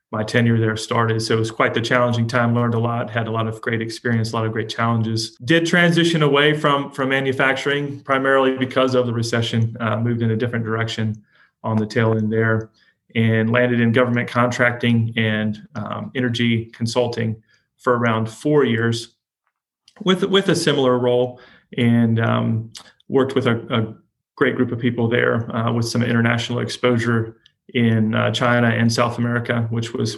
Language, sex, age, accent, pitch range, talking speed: English, male, 30-49, American, 115-130 Hz, 175 wpm